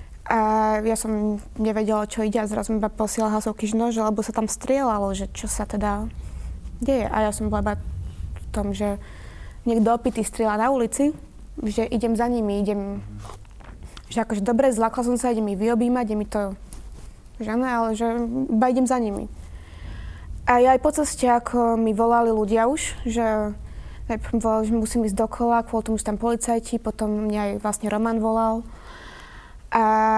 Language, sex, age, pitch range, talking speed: Slovak, female, 20-39, 210-235 Hz, 170 wpm